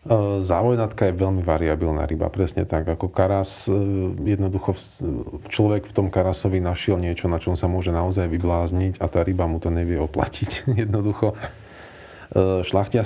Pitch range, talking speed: 85-100 Hz, 145 wpm